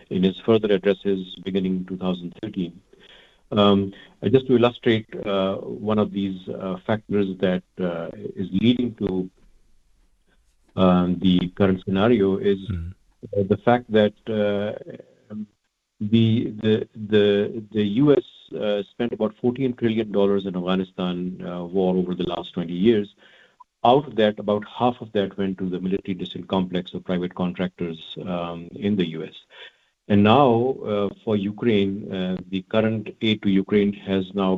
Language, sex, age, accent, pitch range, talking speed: English, male, 50-69, Indian, 95-110 Hz, 145 wpm